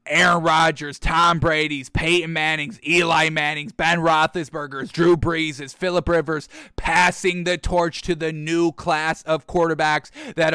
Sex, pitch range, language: male, 160-175 Hz, English